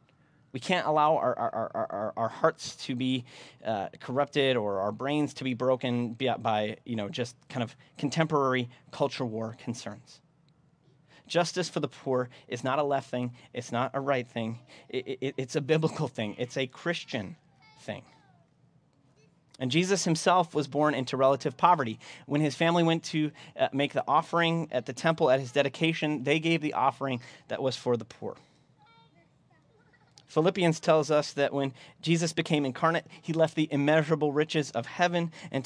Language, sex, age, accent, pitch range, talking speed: English, male, 30-49, American, 130-155 Hz, 160 wpm